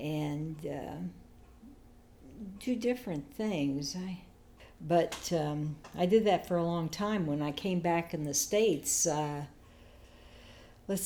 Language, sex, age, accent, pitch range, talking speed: English, female, 60-79, American, 150-180 Hz, 130 wpm